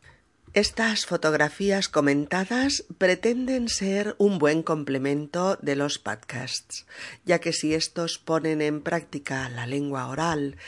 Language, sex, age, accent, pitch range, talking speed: Spanish, female, 40-59, Spanish, 140-185 Hz, 120 wpm